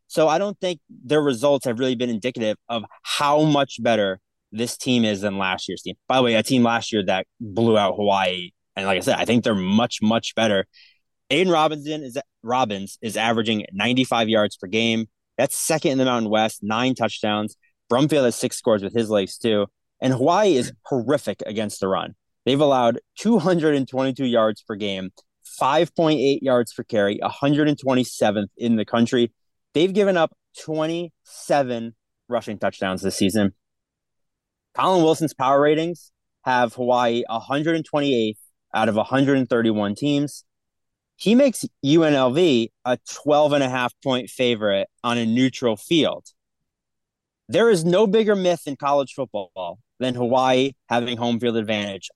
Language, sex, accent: English, male, American